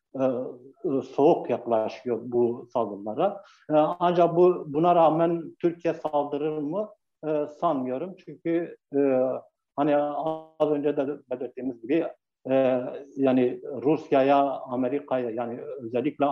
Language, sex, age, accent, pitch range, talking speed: Turkish, male, 60-79, native, 125-155 Hz, 90 wpm